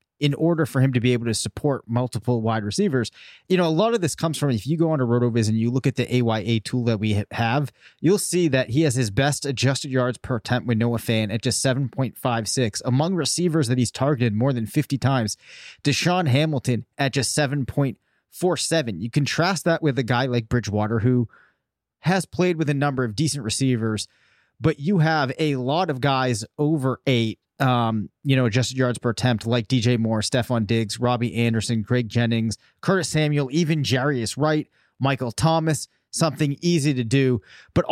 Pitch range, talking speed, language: 120-150 Hz, 190 wpm, English